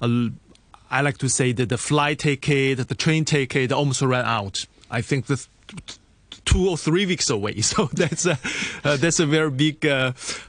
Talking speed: 185 wpm